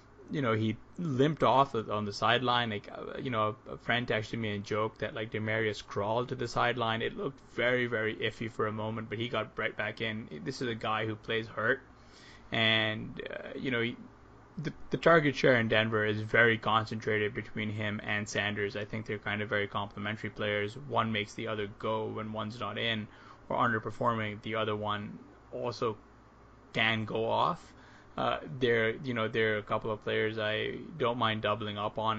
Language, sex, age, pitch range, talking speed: English, male, 20-39, 105-120 Hz, 195 wpm